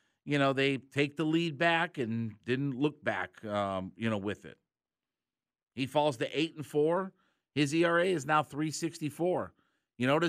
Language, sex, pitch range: English, male, 130-170 Hz